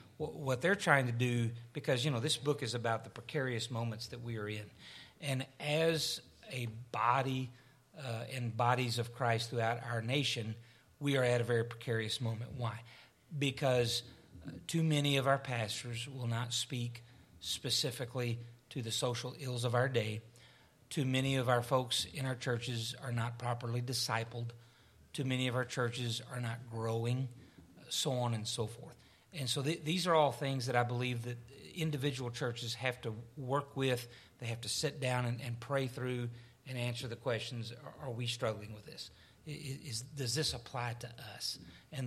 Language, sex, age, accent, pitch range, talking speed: English, male, 40-59, American, 115-130 Hz, 175 wpm